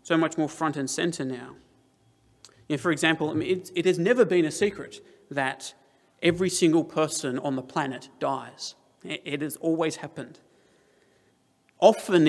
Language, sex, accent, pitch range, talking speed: English, male, Australian, 135-165 Hz, 140 wpm